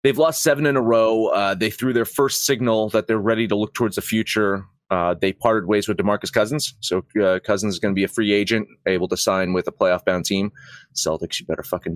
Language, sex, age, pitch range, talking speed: English, male, 30-49, 105-135 Hz, 240 wpm